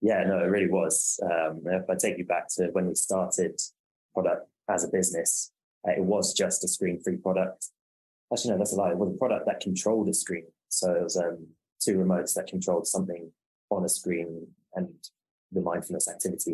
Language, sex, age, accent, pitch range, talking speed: English, male, 20-39, British, 90-95 Hz, 195 wpm